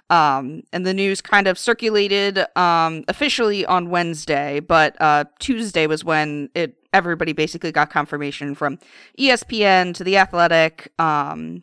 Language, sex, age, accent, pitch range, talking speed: English, female, 30-49, American, 160-205 Hz, 140 wpm